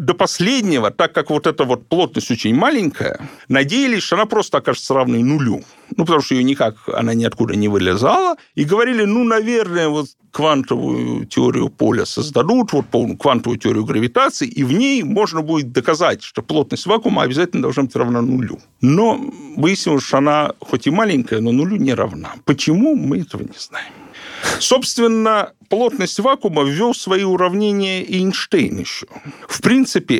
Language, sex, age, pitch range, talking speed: Russian, male, 50-69, 135-220 Hz, 160 wpm